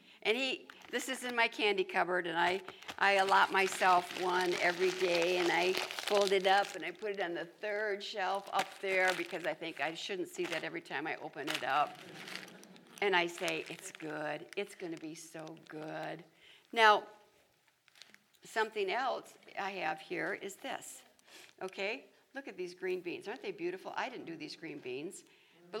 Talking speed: 185 wpm